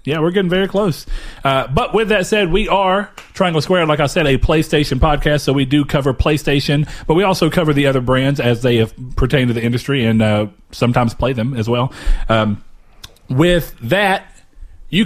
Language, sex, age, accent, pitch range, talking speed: English, male, 30-49, American, 125-160 Hz, 195 wpm